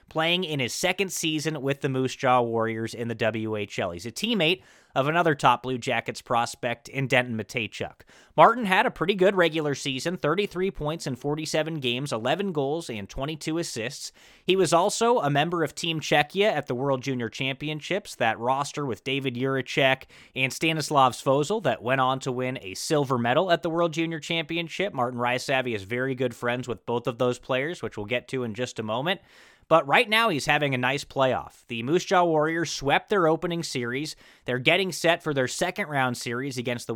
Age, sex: 20-39, male